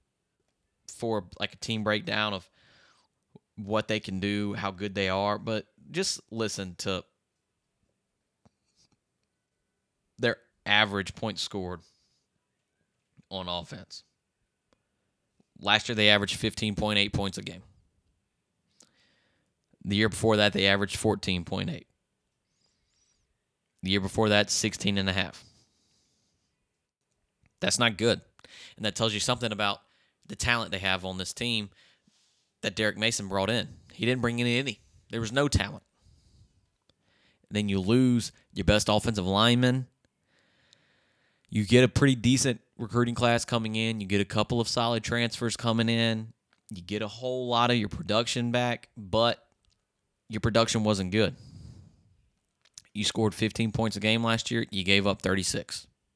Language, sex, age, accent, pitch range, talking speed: English, male, 20-39, American, 100-115 Hz, 135 wpm